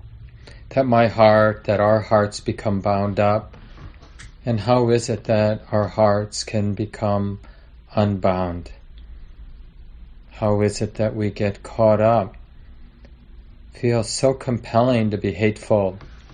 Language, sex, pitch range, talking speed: English, male, 80-110 Hz, 120 wpm